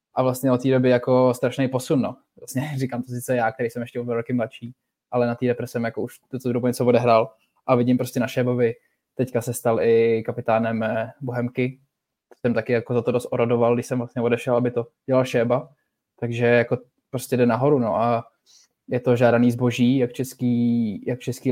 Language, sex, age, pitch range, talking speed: Czech, male, 20-39, 120-125 Hz, 205 wpm